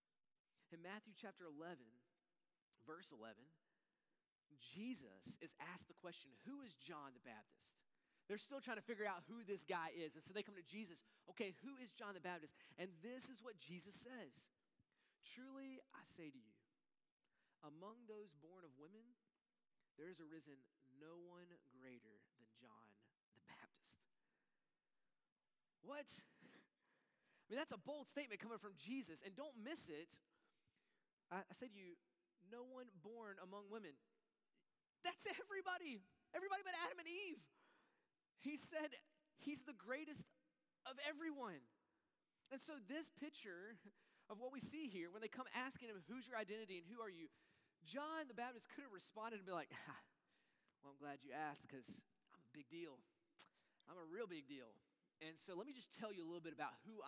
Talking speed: 165 wpm